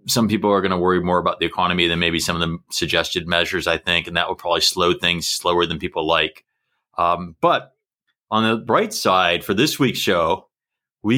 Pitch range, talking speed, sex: 100-135 Hz, 215 wpm, male